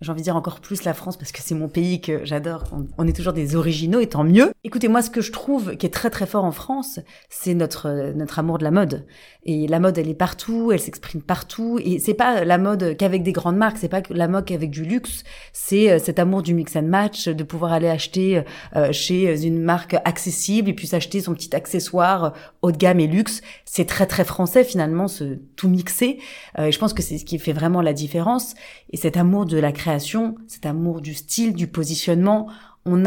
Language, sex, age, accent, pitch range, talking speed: French, female, 30-49, French, 165-210 Hz, 230 wpm